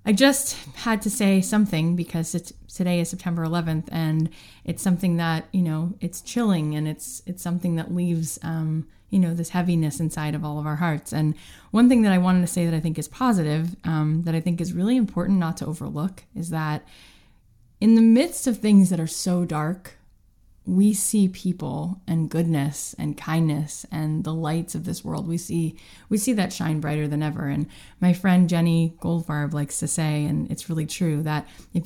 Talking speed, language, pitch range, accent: 200 wpm, English, 155-180 Hz, American